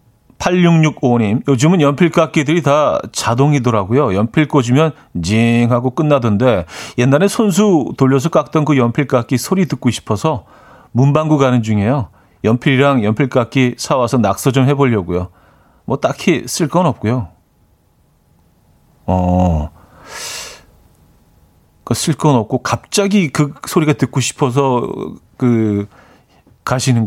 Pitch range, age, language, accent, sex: 110-150 Hz, 40-59, Korean, native, male